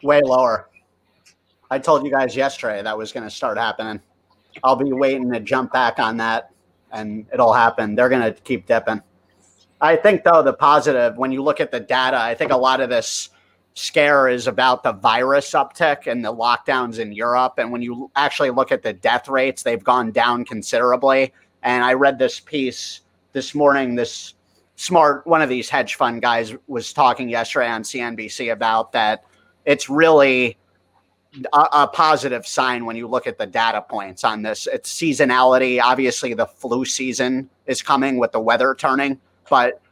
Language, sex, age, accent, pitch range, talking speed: English, male, 30-49, American, 115-140 Hz, 180 wpm